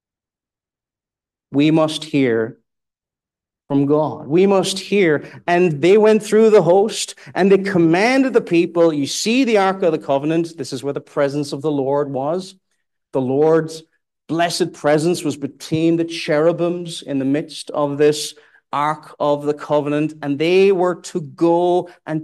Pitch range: 145-195 Hz